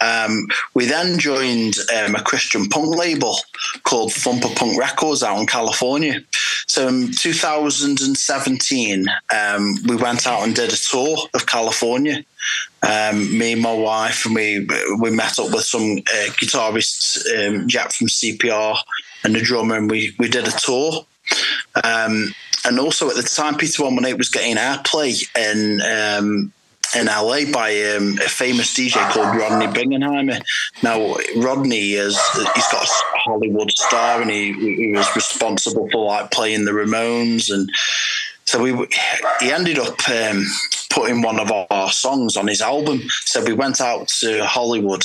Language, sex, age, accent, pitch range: Japanese, male, 20-39, British, 105-130 Hz